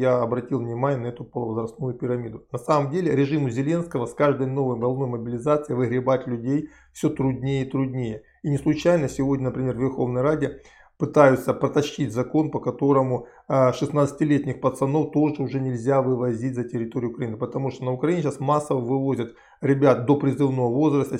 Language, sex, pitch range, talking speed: Russian, male, 125-145 Hz, 160 wpm